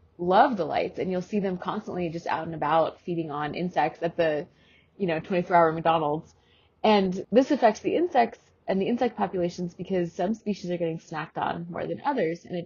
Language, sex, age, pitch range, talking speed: English, female, 20-39, 170-220 Hz, 200 wpm